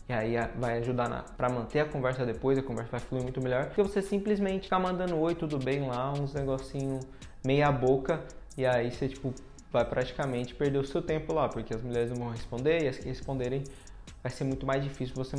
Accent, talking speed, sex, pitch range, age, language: Brazilian, 215 wpm, male, 125-160 Hz, 20-39, Portuguese